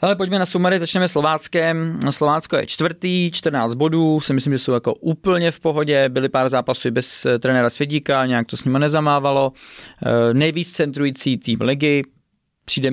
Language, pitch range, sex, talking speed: Czech, 130-155 Hz, male, 165 wpm